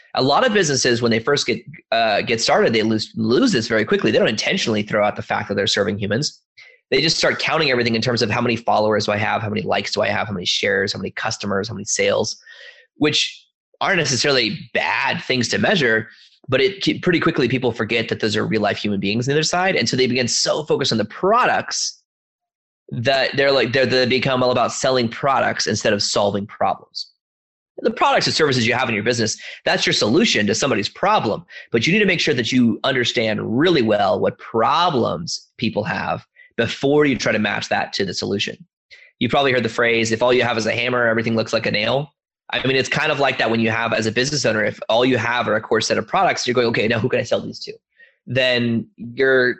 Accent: American